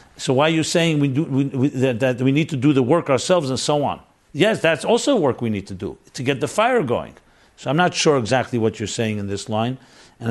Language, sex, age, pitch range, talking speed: English, male, 50-69, 115-145 Hz, 270 wpm